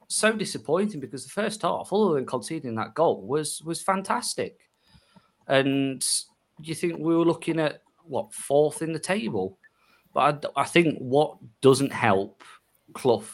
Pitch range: 105-135 Hz